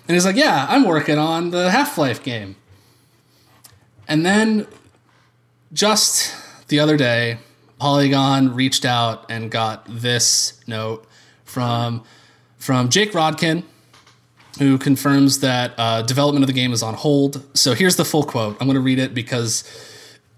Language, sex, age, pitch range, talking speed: English, male, 20-39, 120-150 Hz, 145 wpm